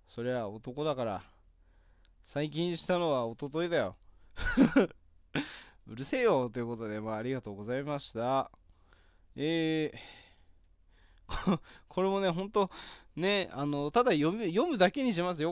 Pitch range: 120-180 Hz